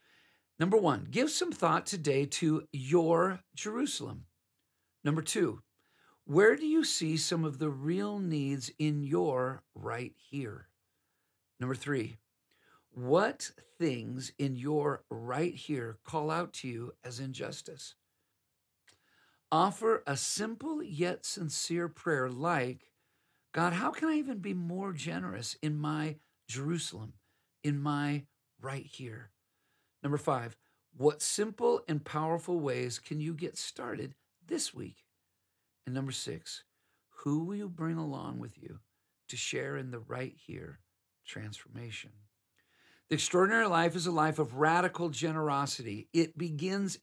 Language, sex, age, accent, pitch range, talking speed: English, male, 50-69, American, 130-170 Hz, 130 wpm